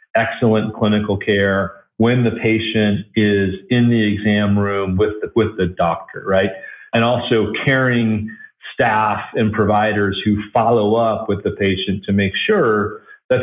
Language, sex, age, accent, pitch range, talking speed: English, male, 50-69, American, 100-120 Hz, 145 wpm